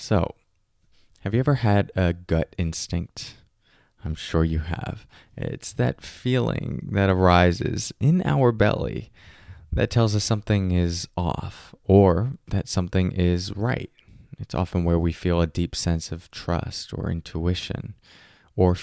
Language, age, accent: English, 20-39, American